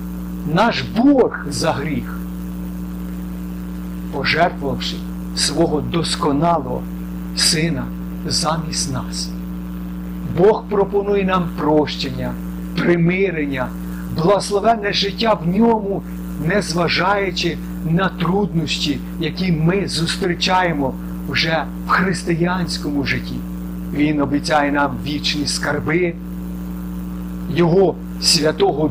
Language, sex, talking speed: Ukrainian, male, 75 wpm